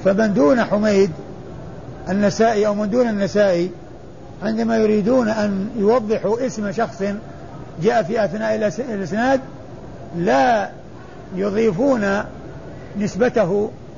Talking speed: 90 wpm